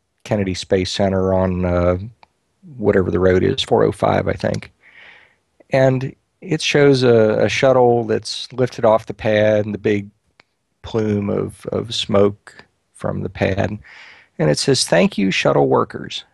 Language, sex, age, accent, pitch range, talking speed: English, male, 40-59, American, 95-115 Hz, 145 wpm